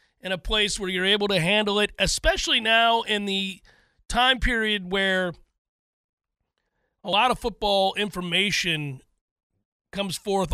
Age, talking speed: 40-59, 130 wpm